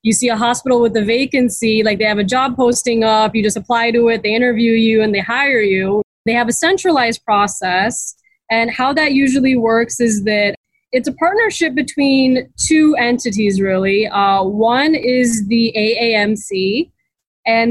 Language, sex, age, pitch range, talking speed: English, female, 20-39, 215-260 Hz, 175 wpm